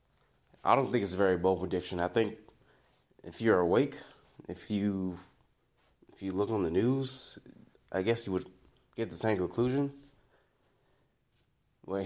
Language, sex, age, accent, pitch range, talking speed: English, male, 20-39, American, 90-110 Hz, 150 wpm